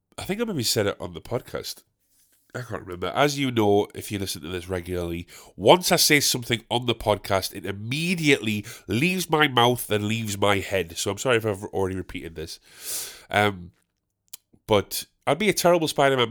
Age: 30-49